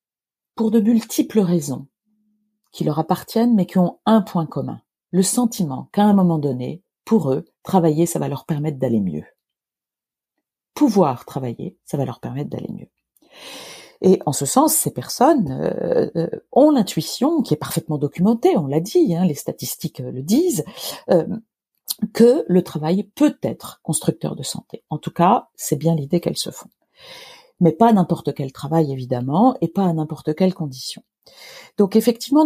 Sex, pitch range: female, 145-205 Hz